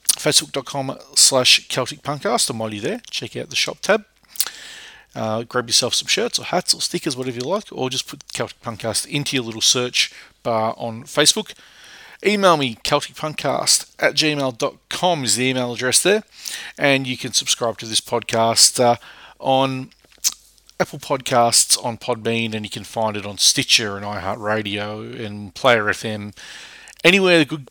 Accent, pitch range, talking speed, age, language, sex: Australian, 110-145 Hz, 160 wpm, 40-59, English, male